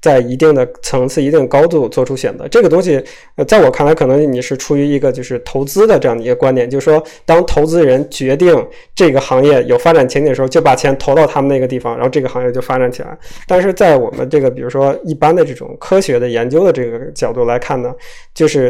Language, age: Chinese, 20-39